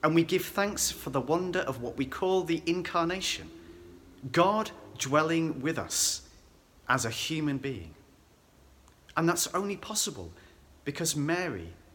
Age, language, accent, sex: 40-59, English, British, male